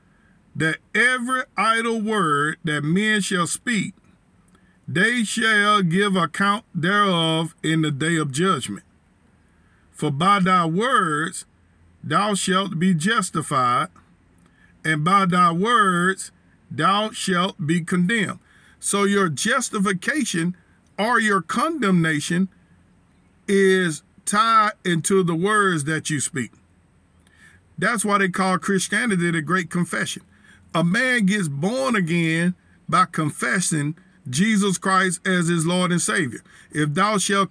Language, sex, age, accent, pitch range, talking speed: English, male, 50-69, American, 165-200 Hz, 115 wpm